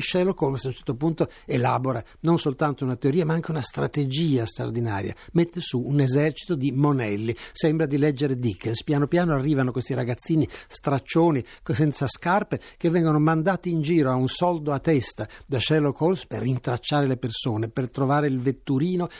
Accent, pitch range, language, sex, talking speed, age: native, 120-155 Hz, Italian, male, 170 wpm, 60-79